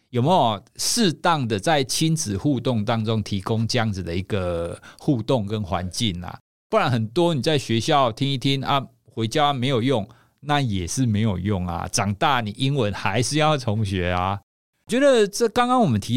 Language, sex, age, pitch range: Chinese, male, 50-69, 105-155 Hz